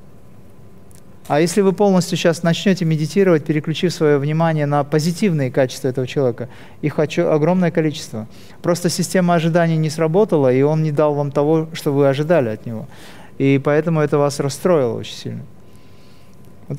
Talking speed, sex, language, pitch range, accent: 150 wpm, male, Russian, 130-170 Hz, native